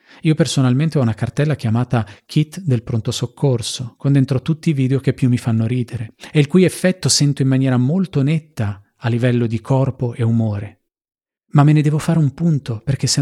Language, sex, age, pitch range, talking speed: Italian, male, 40-59, 110-135 Hz, 200 wpm